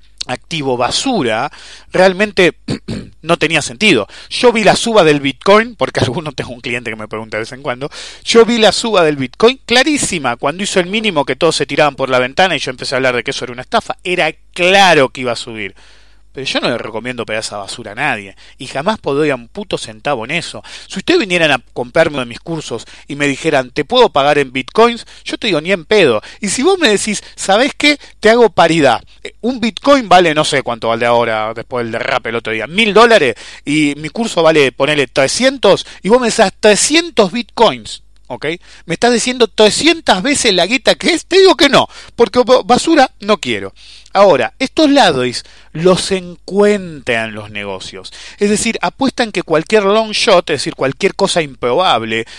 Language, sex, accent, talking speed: English, male, Argentinian, 200 wpm